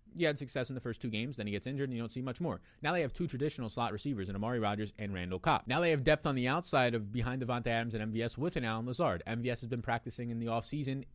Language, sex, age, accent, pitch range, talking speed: English, male, 20-39, American, 105-145 Hz, 295 wpm